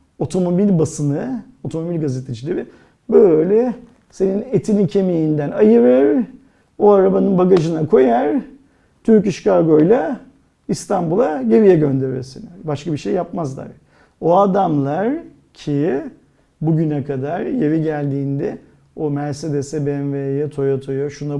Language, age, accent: Turkish, 40-59, native